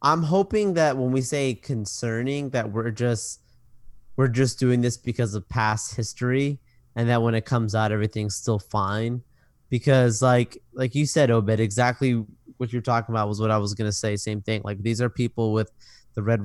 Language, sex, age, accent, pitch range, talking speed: English, male, 20-39, American, 110-125 Hz, 195 wpm